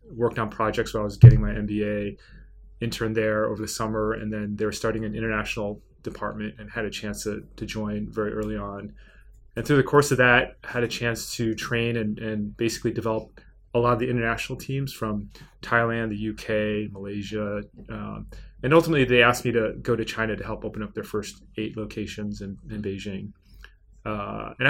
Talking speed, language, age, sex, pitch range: 200 wpm, English, 20-39, male, 105-120 Hz